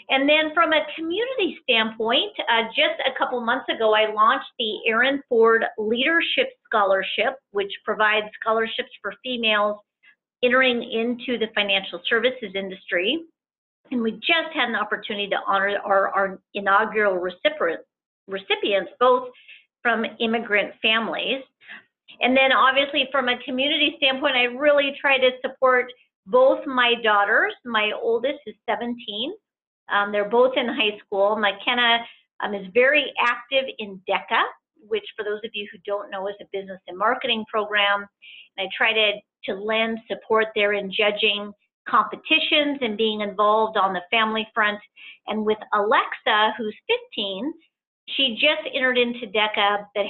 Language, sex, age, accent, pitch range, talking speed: English, female, 40-59, American, 205-265 Hz, 145 wpm